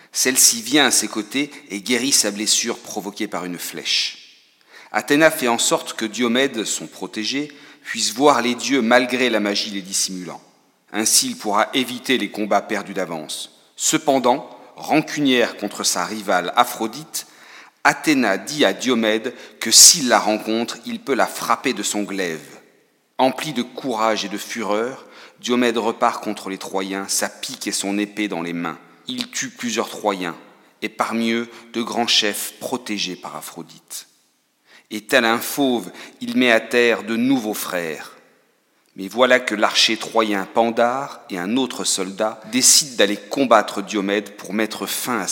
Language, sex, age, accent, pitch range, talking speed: French, male, 40-59, French, 105-130 Hz, 160 wpm